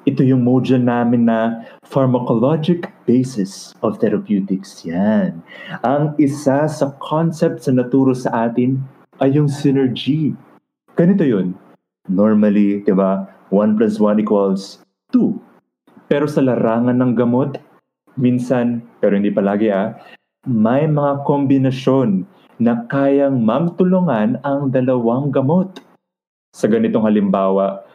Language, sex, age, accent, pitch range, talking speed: English, male, 20-39, Filipino, 110-150 Hz, 115 wpm